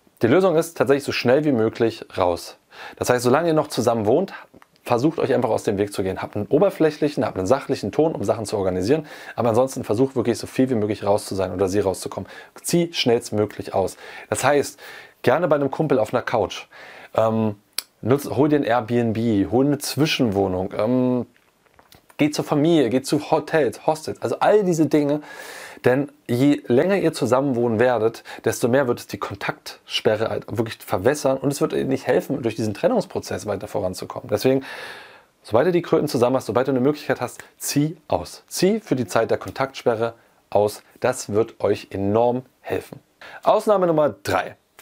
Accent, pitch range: German, 110-150 Hz